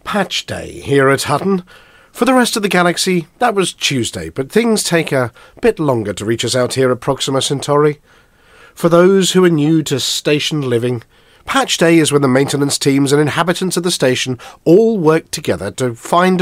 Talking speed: 195 wpm